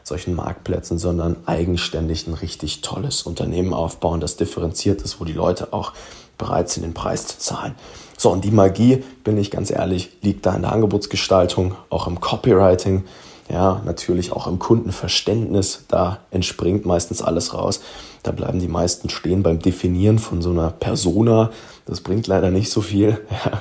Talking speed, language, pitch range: 170 wpm, German, 85-100 Hz